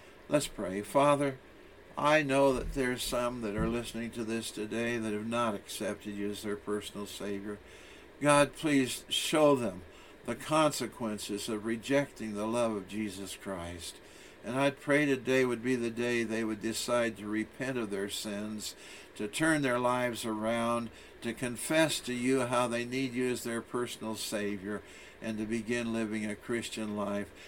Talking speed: 165 wpm